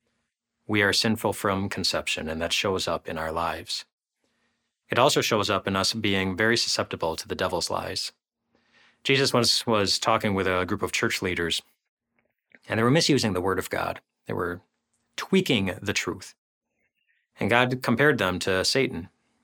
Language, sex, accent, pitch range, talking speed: English, male, American, 95-115 Hz, 165 wpm